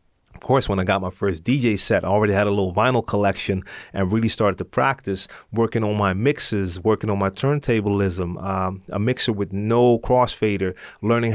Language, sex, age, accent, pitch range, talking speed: English, male, 30-49, American, 100-125 Hz, 190 wpm